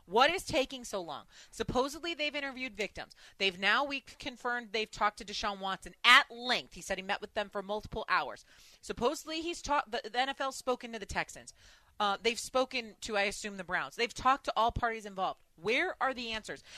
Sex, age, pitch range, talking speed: female, 30-49, 200-275 Hz, 205 wpm